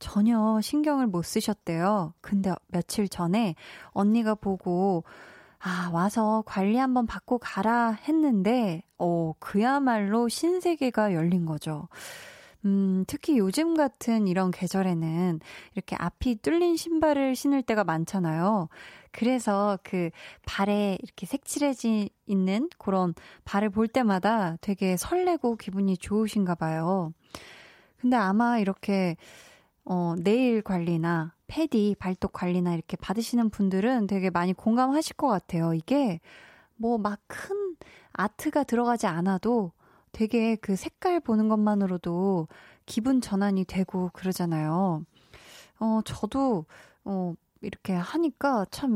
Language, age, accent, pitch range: Korean, 20-39, native, 180-240 Hz